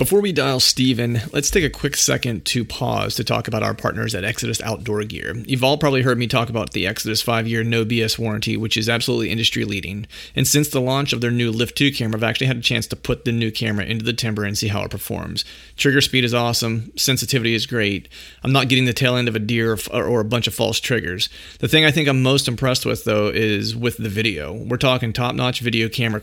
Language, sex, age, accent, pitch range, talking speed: English, male, 30-49, American, 110-130 Hz, 240 wpm